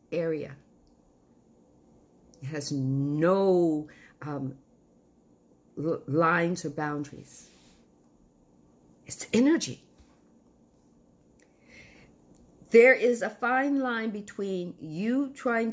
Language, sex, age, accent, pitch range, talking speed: English, female, 50-69, American, 150-225 Hz, 65 wpm